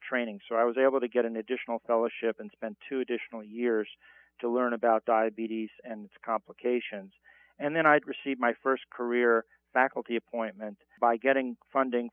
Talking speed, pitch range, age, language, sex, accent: 170 wpm, 115-135 Hz, 50-69, English, male, American